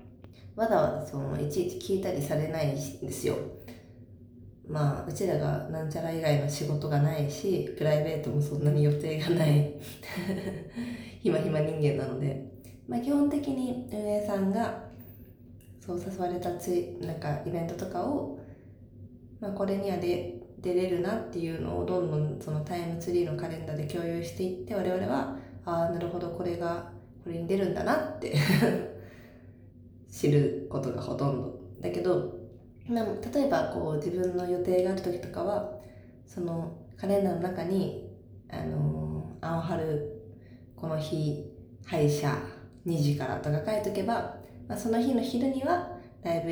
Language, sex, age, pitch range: Japanese, female, 20-39, 120-180 Hz